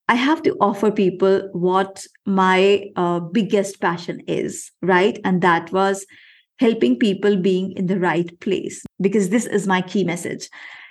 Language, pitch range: English, 180-210 Hz